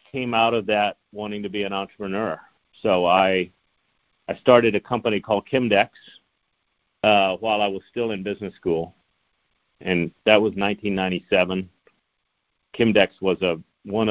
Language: English